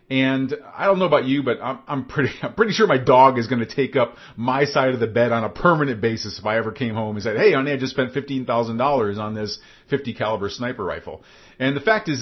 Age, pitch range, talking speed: 40-59, 105-130 Hz, 255 wpm